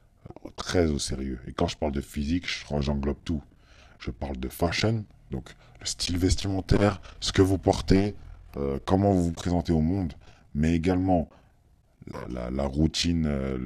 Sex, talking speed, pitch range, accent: male, 165 wpm, 75-95 Hz, French